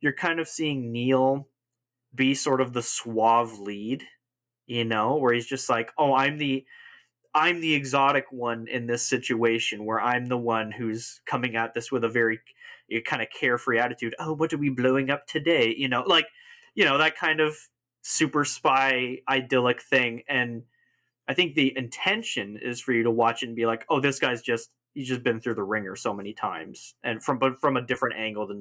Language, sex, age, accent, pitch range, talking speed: English, male, 20-39, American, 120-145 Hz, 200 wpm